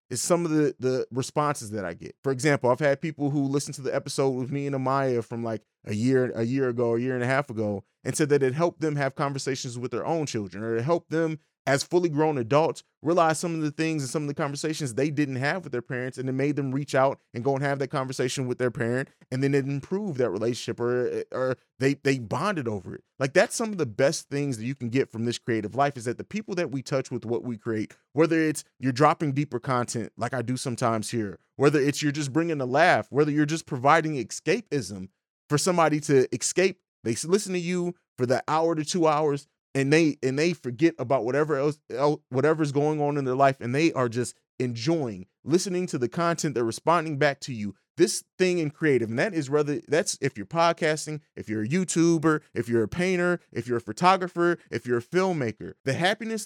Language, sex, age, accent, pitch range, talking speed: English, male, 30-49, American, 125-160 Hz, 235 wpm